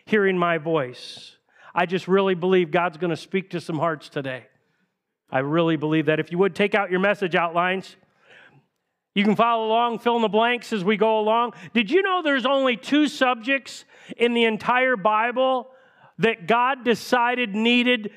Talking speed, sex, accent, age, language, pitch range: 180 wpm, male, American, 40-59, English, 190-235 Hz